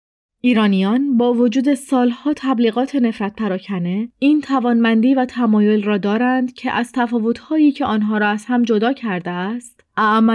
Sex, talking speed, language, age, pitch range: female, 145 wpm, Persian, 30-49, 210-255 Hz